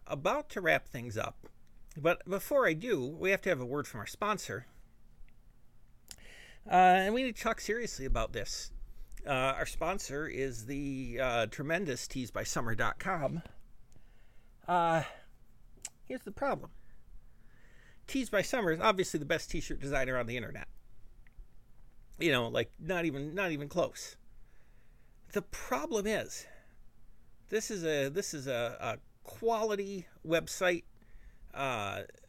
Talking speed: 130 wpm